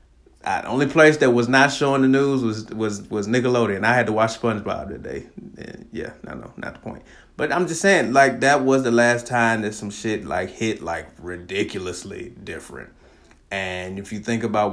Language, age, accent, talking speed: English, 30-49, American, 210 wpm